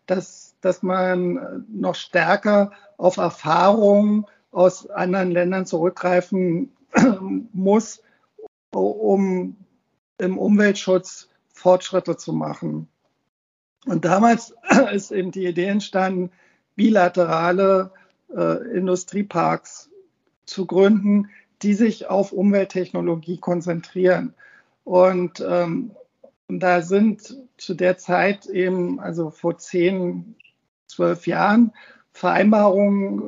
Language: German